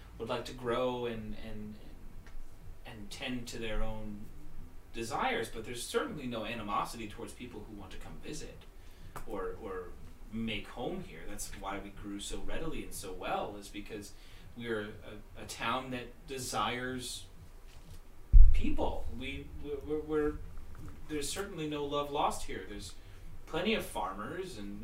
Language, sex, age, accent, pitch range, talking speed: English, male, 30-49, American, 95-130 Hz, 150 wpm